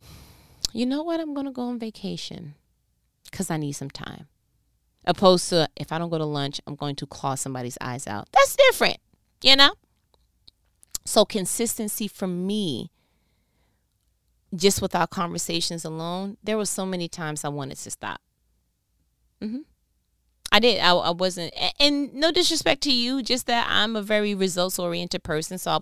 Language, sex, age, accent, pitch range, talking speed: English, female, 30-49, American, 155-215 Hz, 165 wpm